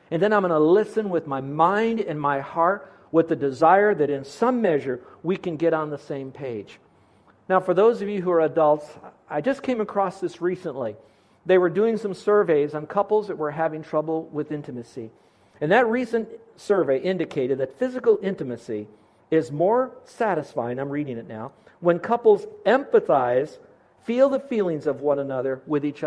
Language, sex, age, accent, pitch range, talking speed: English, male, 50-69, American, 145-200 Hz, 180 wpm